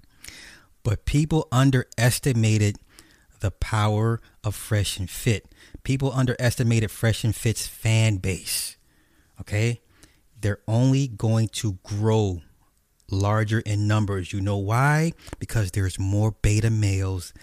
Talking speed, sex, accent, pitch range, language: 115 wpm, male, American, 95-120 Hz, English